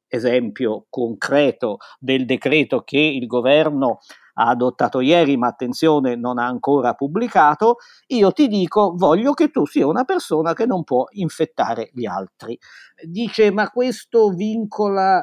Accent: native